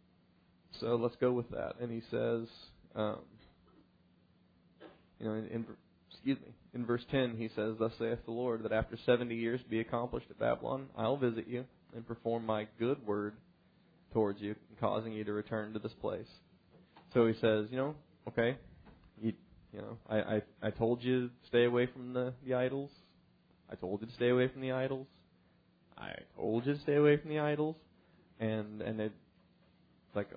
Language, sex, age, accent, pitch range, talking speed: English, male, 20-39, American, 110-130 Hz, 185 wpm